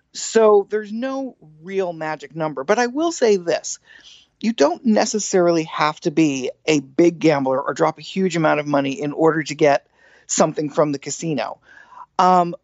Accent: American